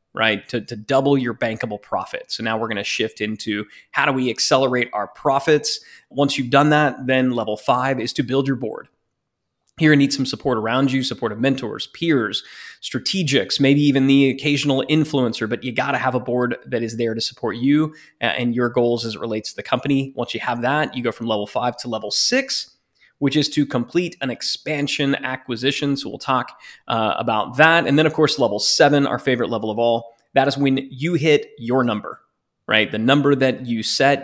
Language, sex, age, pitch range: English, male, 20-39, 115-145 Hz